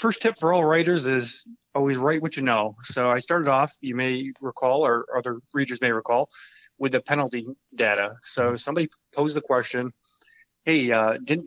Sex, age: male, 20-39